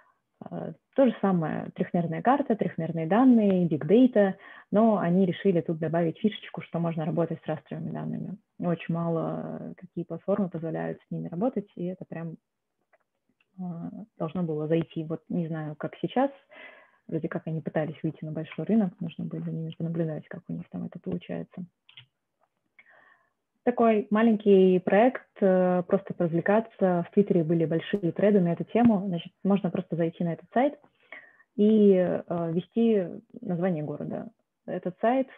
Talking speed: 140 wpm